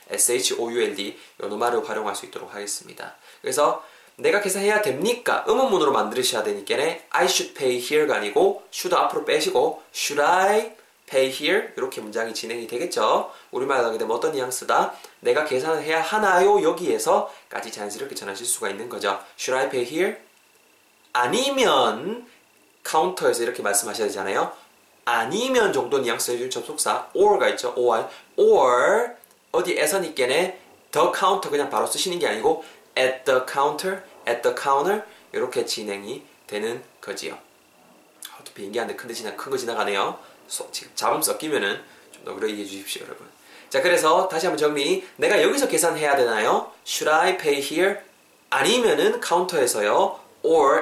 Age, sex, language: 20-39, male, Korean